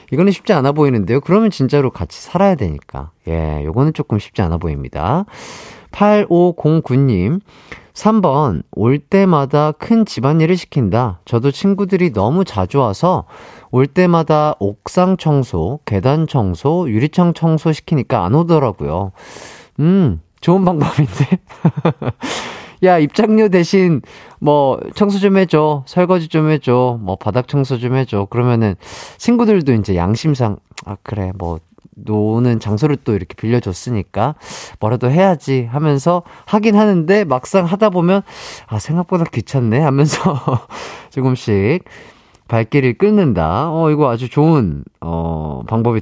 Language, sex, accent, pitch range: Korean, male, native, 110-175 Hz